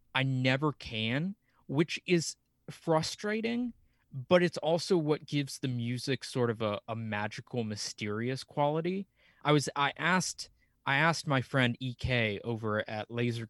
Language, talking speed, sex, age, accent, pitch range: English, 140 wpm, male, 20-39, American, 115-135 Hz